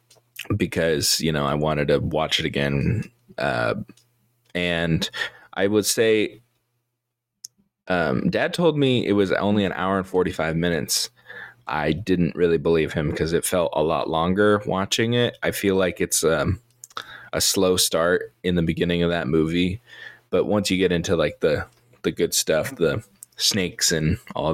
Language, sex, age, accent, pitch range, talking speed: English, male, 20-39, American, 85-120 Hz, 165 wpm